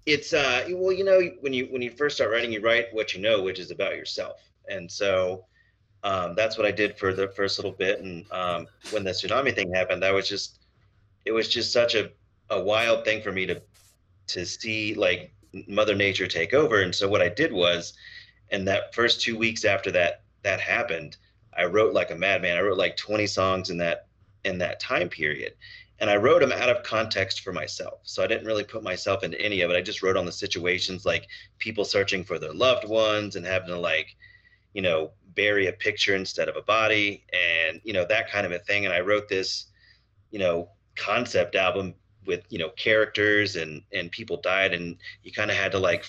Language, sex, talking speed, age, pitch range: English, male, 220 wpm, 30-49, 95-110 Hz